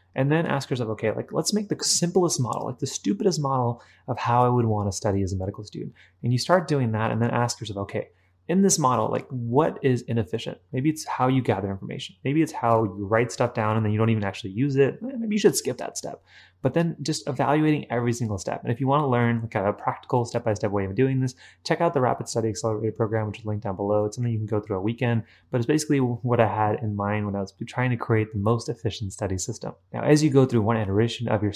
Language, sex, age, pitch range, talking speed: English, male, 20-39, 105-135 Hz, 260 wpm